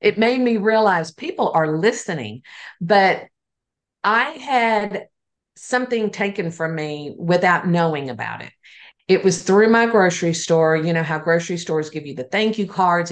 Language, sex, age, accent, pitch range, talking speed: English, female, 50-69, American, 170-215 Hz, 160 wpm